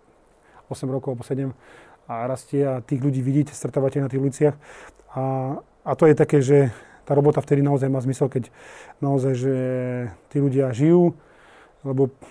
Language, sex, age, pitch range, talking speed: Slovak, male, 30-49, 135-150 Hz, 160 wpm